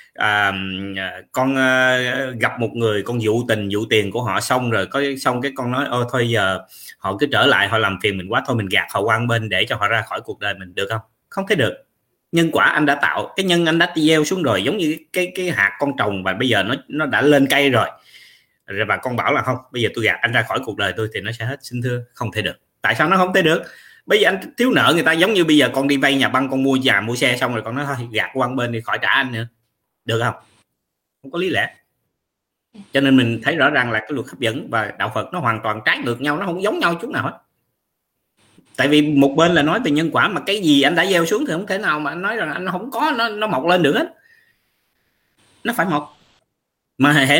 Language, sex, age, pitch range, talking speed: Vietnamese, male, 20-39, 115-160 Hz, 275 wpm